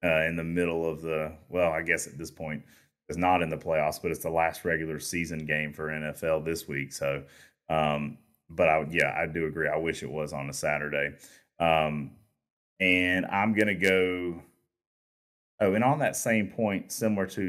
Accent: American